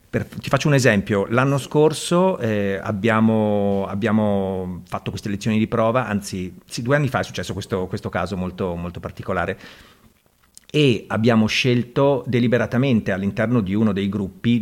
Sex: male